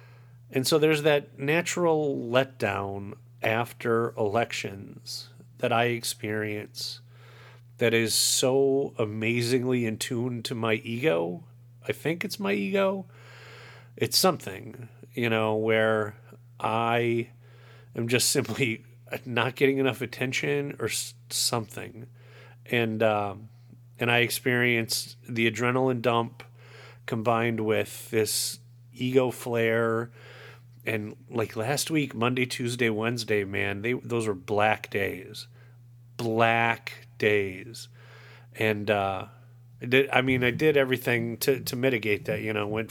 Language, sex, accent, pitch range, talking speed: English, male, American, 115-125 Hz, 115 wpm